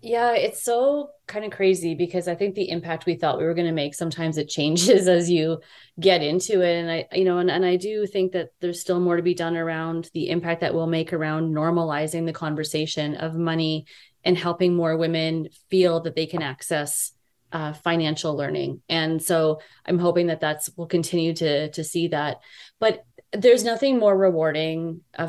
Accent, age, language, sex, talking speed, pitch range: American, 30-49, English, female, 200 wpm, 160-180 Hz